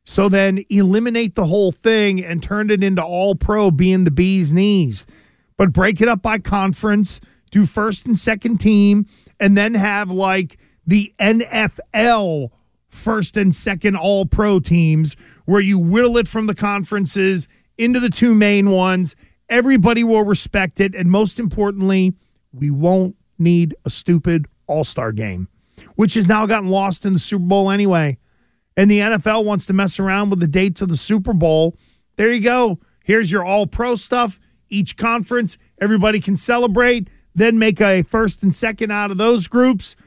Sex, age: male, 40-59